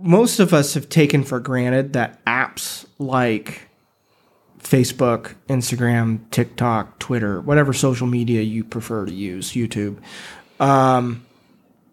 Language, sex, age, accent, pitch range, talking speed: English, male, 30-49, American, 125-155 Hz, 115 wpm